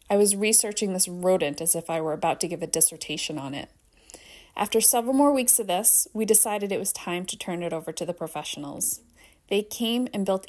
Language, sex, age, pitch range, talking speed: English, female, 30-49, 170-220 Hz, 215 wpm